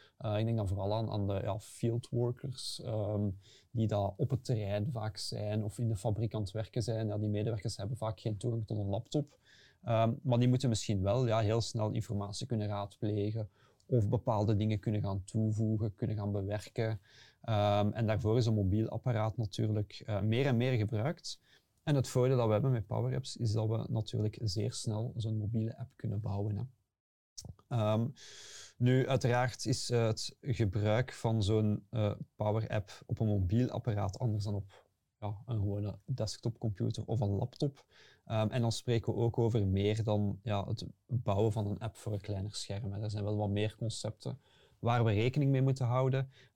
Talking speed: 185 wpm